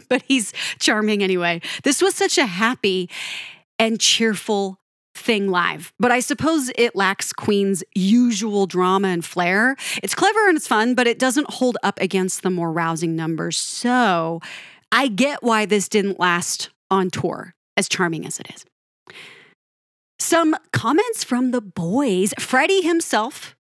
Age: 30-49